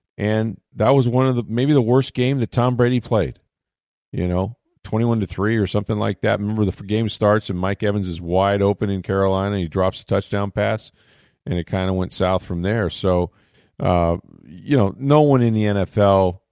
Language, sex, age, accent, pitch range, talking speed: English, male, 40-59, American, 90-115 Hz, 205 wpm